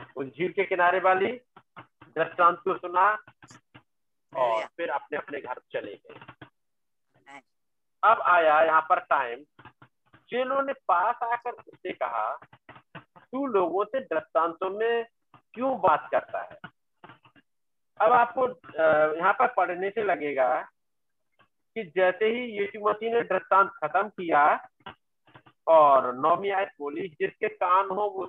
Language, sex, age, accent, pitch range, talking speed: Hindi, male, 50-69, native, 180-235 Hz, 120 wpm